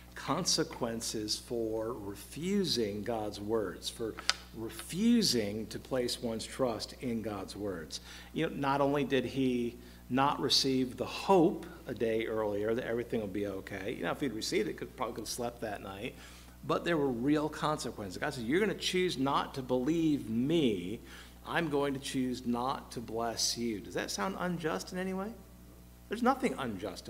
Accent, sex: American, male